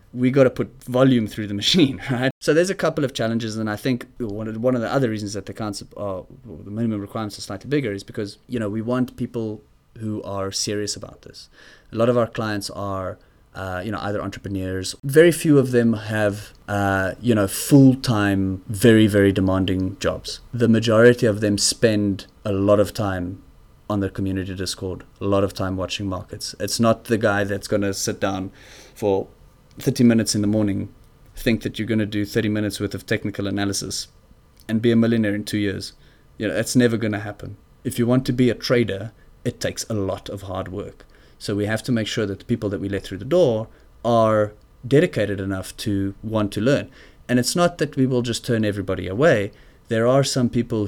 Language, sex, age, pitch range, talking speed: English, male, 30-49, 100-120 Hz, 215 wpm